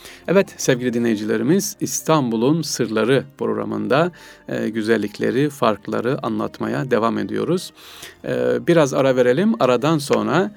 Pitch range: 115-170 Hz